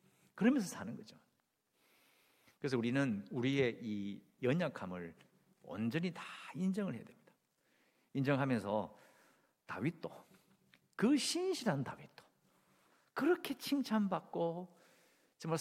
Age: 50-69